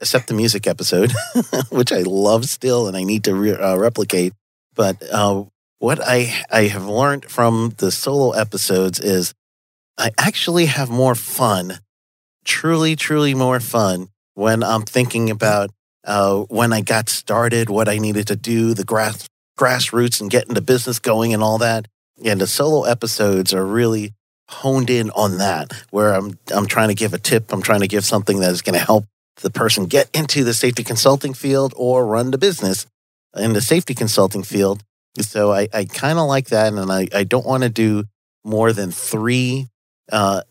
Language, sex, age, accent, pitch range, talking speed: English, male, 40-59, American, 100-125 Hz, 185 wpm